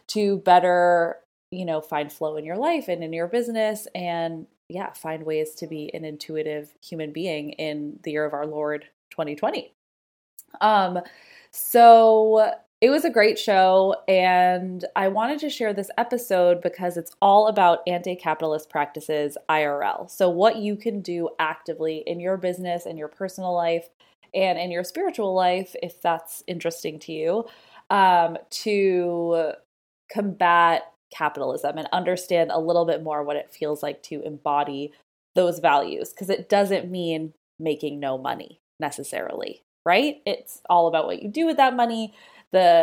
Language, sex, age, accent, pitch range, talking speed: English, female, 20-39, American, 155-200 Hz, 155 wpm